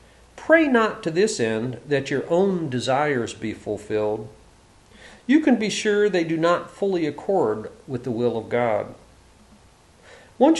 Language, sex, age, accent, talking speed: English, male, 40-59, American, 145 wpm